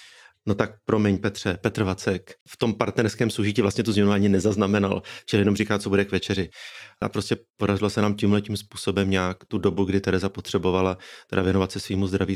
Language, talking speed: Czech, 195 wpm